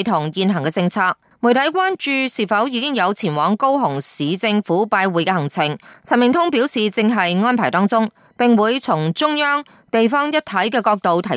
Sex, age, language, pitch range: female, 20-39, Chinese, 185-250 Hz